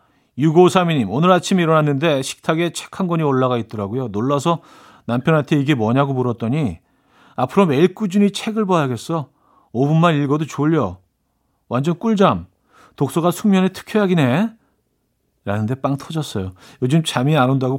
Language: Korean